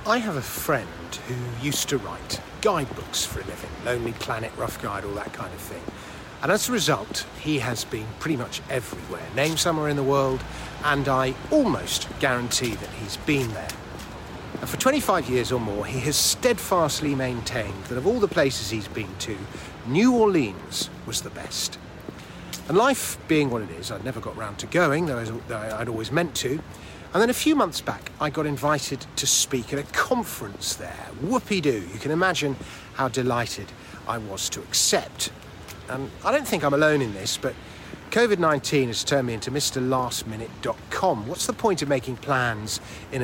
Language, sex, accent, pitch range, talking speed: English, male, British, 110-150 Hz, 185 wpm